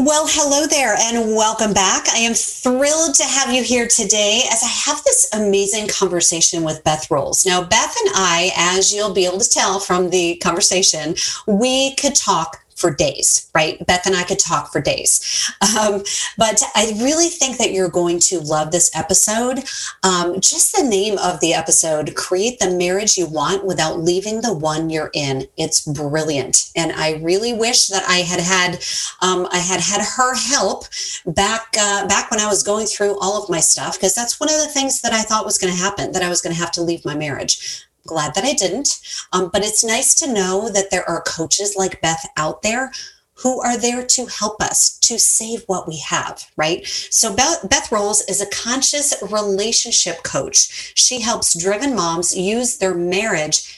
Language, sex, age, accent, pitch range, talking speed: English, female, 40-59, American, 180-235 Hz, 195 wpm